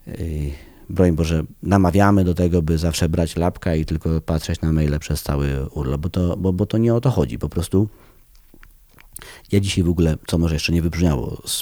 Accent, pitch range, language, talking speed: native, 80-100 Hz, Polish, 195 wpm